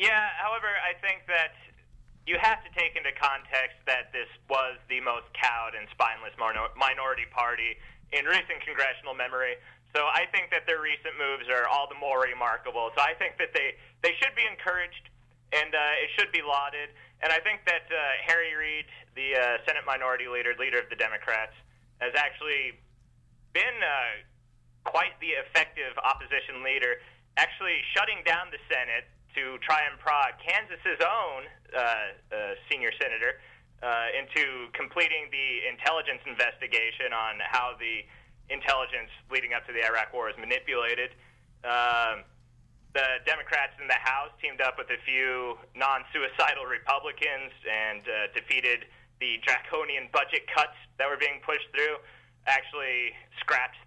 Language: English